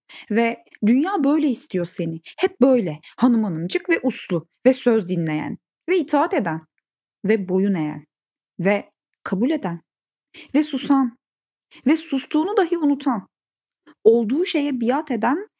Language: Turkish